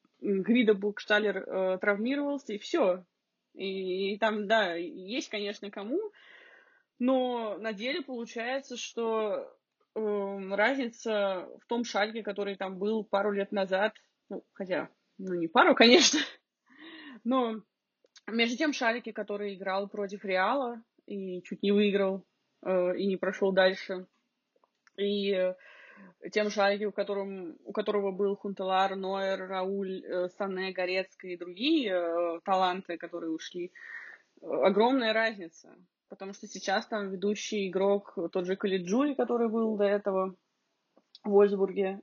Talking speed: 125 wpm